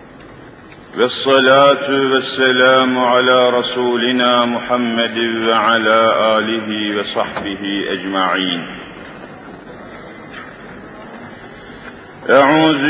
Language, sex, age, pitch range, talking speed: Turkish, male, 50-69, 110-140 Hz, 45 wpm